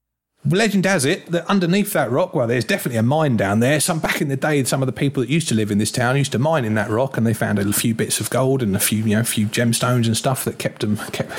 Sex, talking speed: male, 305 wpm